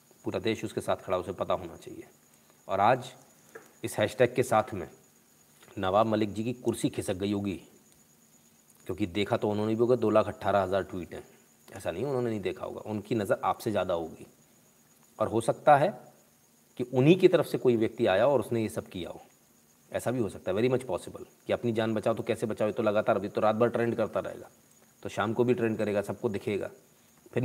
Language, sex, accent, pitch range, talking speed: Hindi, male, native, 110-125 Hz, 215 wpm